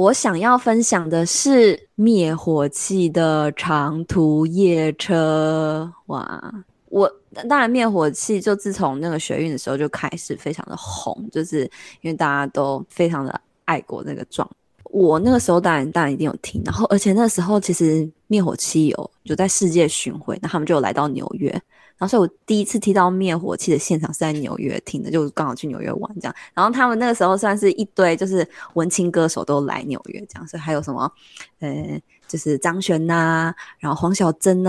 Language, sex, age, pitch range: Chinese, female, 20-39, 160-215 Hz